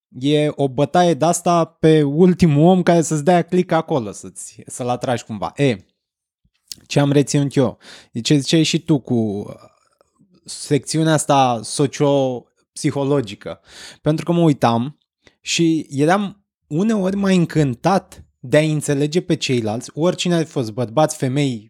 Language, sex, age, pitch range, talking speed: Romanian, male, 20-39, 130-165 Hz, 140 wpm